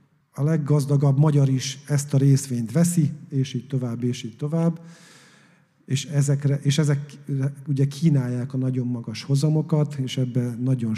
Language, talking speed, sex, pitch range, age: Hungarian, 150 wpm, male, 120-150 Hz, 50-69